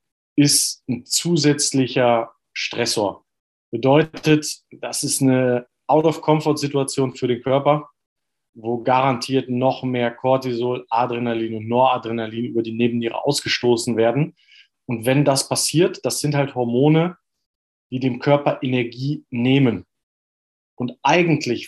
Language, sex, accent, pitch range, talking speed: German, male, German, 120-145 Hz, 110 wpm